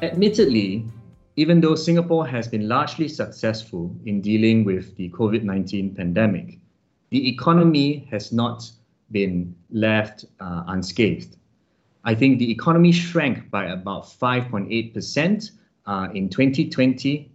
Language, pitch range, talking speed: English, 105-150 Hz, 115 wpm